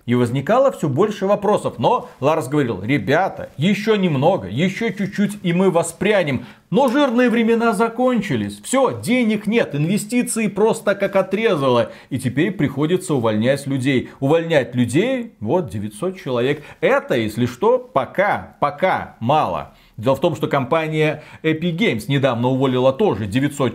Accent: native